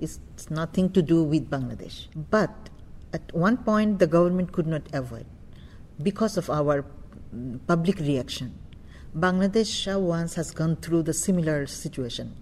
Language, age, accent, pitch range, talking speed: English, 50-69, Indian, 140-185 Hz, 135 wpm